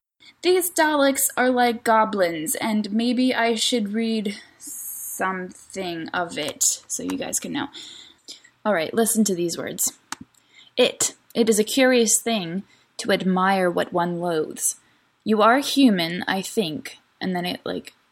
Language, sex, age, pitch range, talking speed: English, female, 10-29, 190-275 Hz, 140 wpm